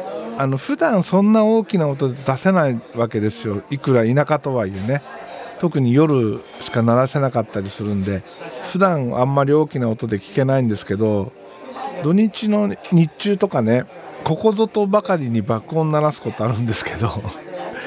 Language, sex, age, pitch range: Japanese, male, 50-69, 120-190 Hz